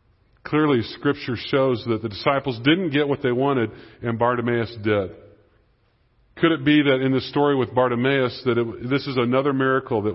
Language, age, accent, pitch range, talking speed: English, 40-59, American, 115-140 Hz, 170 wpm